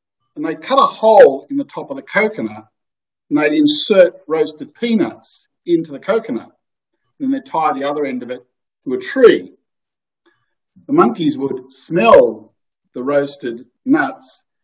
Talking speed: 155 wpm